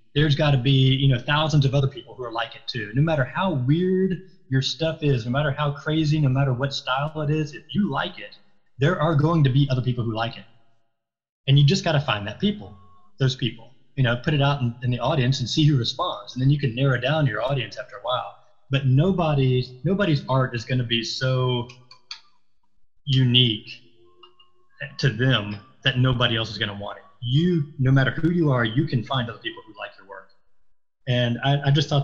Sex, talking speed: male, 220 wpm